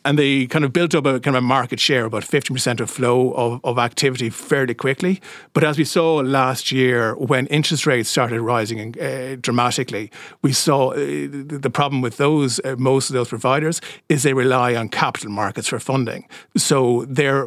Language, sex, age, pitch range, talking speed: English, male, 50-69, 110-135 Hz, 190 wpm